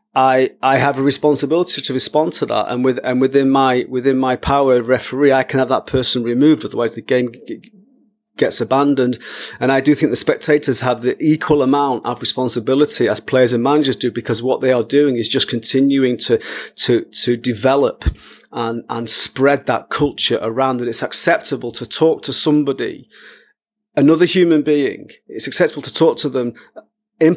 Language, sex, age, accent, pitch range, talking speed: English, male, 40-59, British, 125-145 Hz, 180 wpm